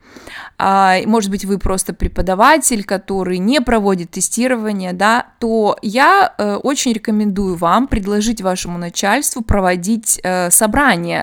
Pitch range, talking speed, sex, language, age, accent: 190-250 Hz, 105 wpm, female, Russian, 20-39, native